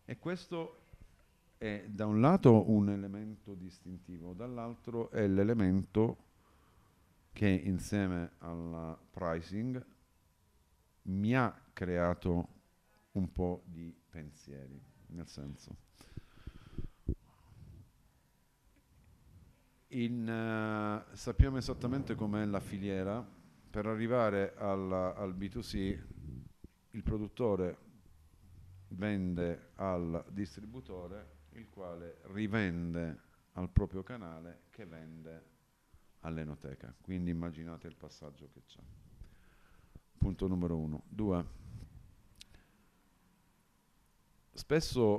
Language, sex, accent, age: Italian, male, native, 50-69